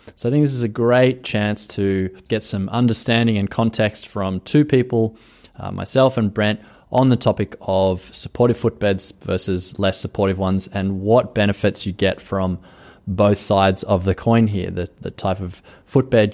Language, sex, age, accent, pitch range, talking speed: English, male, 20-39, Australian, 95-115 Hz, 175 wpm